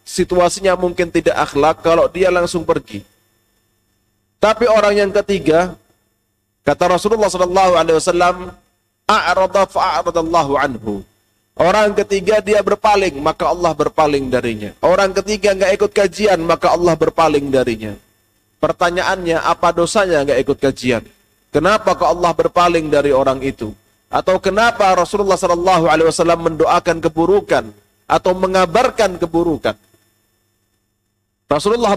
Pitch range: 115-185 Hz